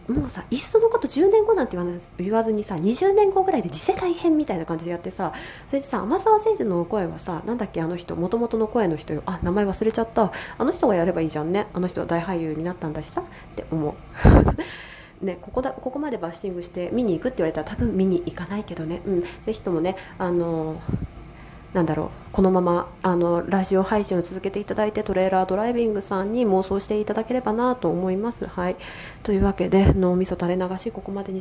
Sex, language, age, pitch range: female, Japanese, 20-39, 175-225 Hz